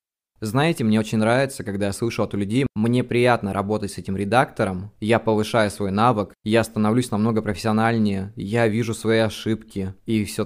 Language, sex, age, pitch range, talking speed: Russian, male, 20-39, 105-120 Hz, 165 wpm